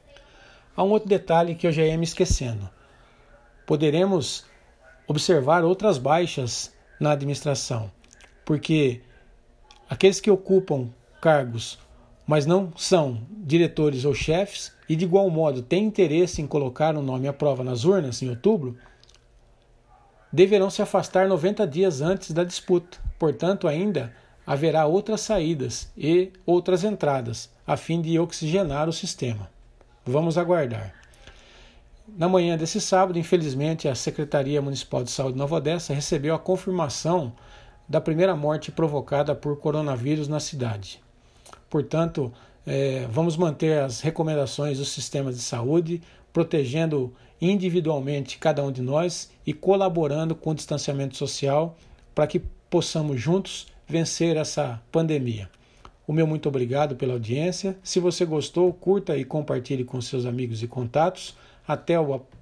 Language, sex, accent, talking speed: Portuguese, male, Brazilian, 135 wpm